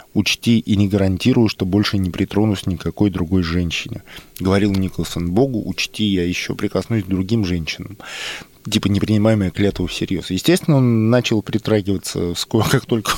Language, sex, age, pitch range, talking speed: Russian, male, 20-39, 95-125 Hz, 140 wpm